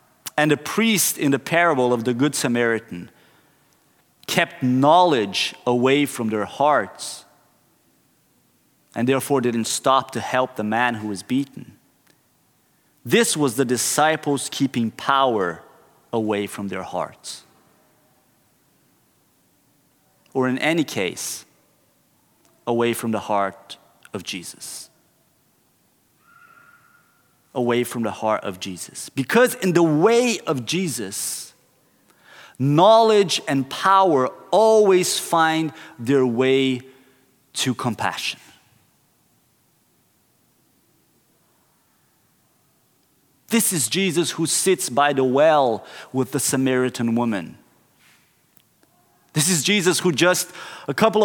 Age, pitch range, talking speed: 30-49, 125-170 Hz, 105 wpm